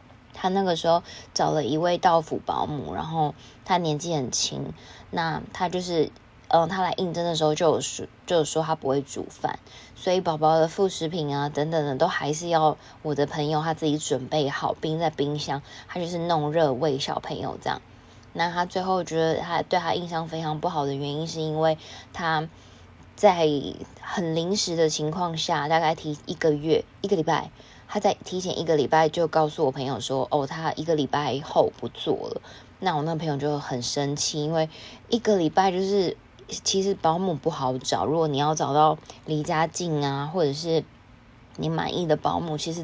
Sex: female